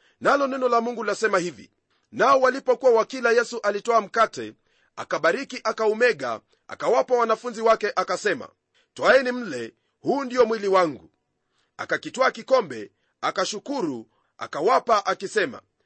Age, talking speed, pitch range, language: 40-59, 110 wpm, 225-260 Hz, Swahili